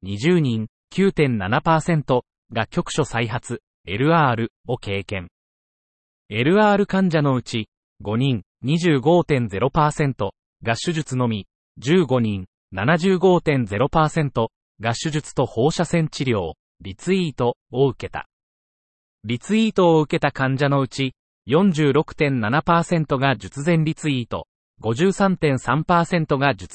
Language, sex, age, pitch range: Japanese, male, 30-49, 115-165 Hz